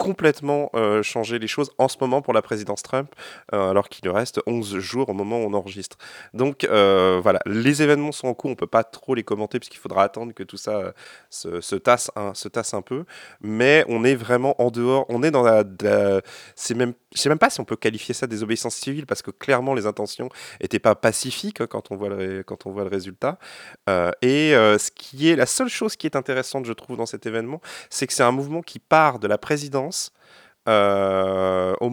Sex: male